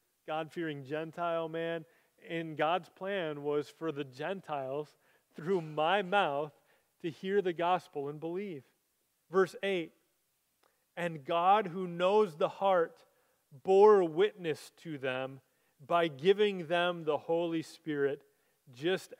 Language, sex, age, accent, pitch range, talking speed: English, male, 30-49, American, 170-270 Hz, 120 wpm